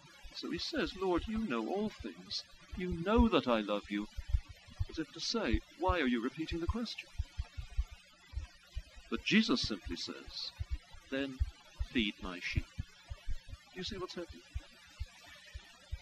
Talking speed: 135 wpm